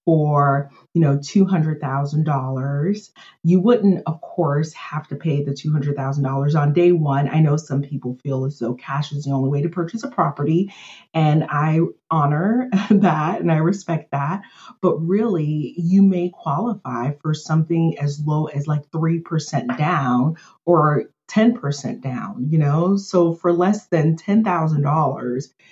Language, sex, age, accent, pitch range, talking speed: English, female, 30-49, American, 145-175 Hz, 170 wpm